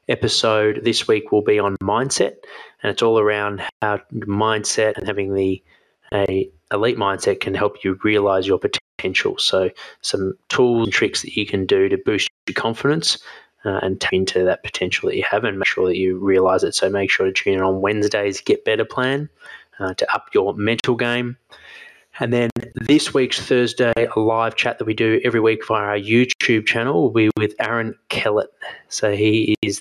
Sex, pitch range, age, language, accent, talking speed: male, 100-125 Hz, 20-39, English, Australian, 195 wpm